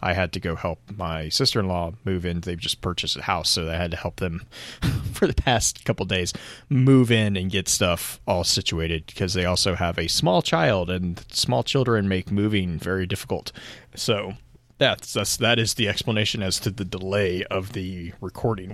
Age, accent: 30-49, American